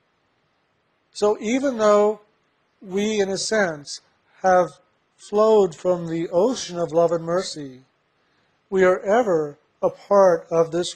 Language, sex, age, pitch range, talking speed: English, male, 50-69, 160-195 Hz, 125 wpm